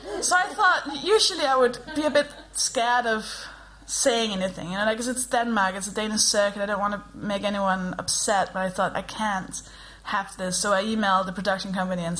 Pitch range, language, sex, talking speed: 190-250 Hz, English, female, 215 wpm